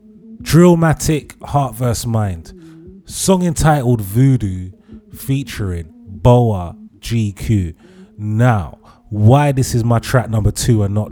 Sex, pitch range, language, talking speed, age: male, 105-145 Hz, English, 110 wpm, 30-49